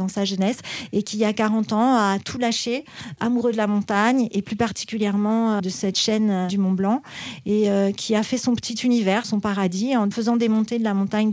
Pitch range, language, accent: 200-235 Hz, French, French